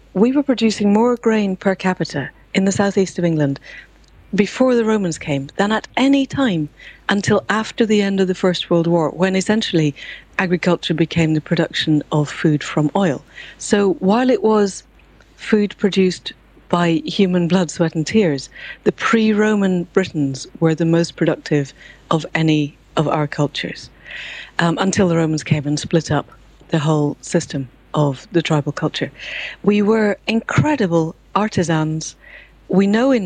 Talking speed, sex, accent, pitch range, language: 155 wpm, female, British, 155-195 Hz, English